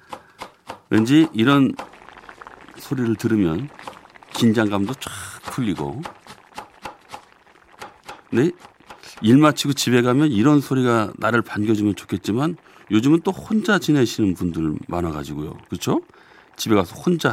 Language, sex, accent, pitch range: Korean, male, native, 95-135 Hz